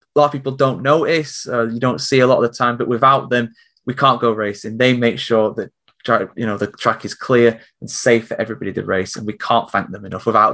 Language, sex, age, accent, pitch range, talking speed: English, male, 20-39, British, 110-130 Hz, 260 wpm